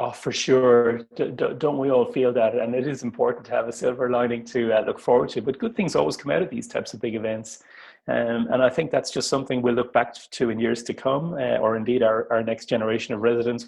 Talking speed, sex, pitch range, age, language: 260 wpm, male, 115-130 Hz, 30-49, English